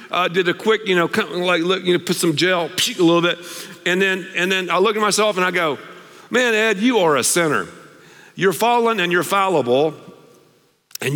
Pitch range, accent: 150-215 Hz, American